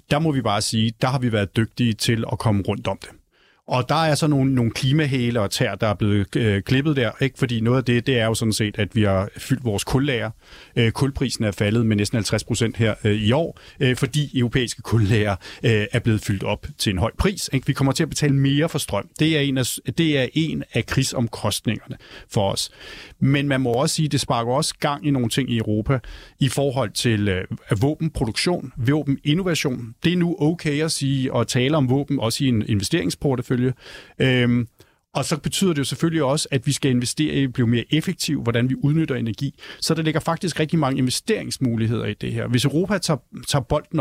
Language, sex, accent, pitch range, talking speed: Danish, male, native, 115-150 Hz, 215 wpm